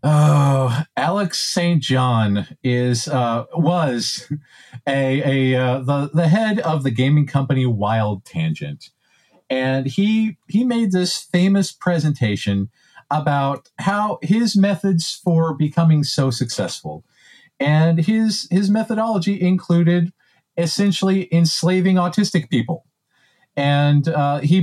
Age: 40-59